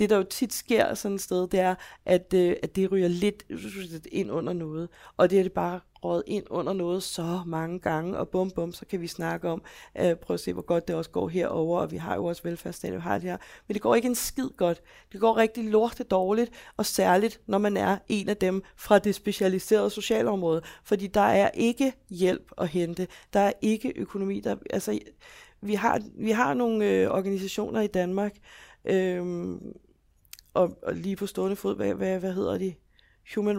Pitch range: 180-210 Hz